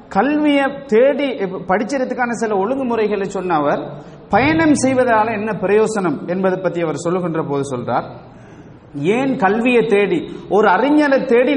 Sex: male